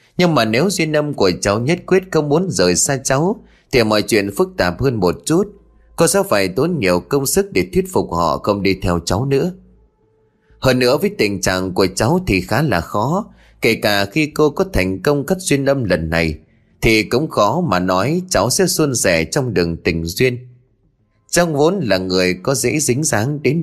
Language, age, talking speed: Vietnamese, 20-39, 210 wpm